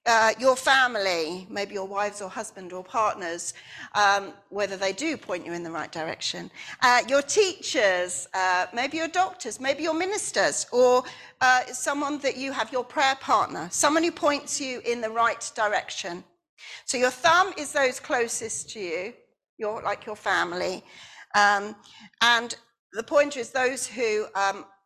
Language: English